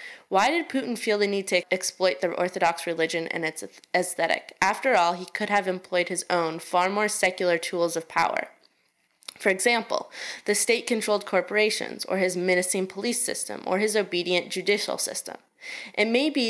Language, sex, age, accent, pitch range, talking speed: English, female, 20-39, American, 175-210 Hz, 165 wpm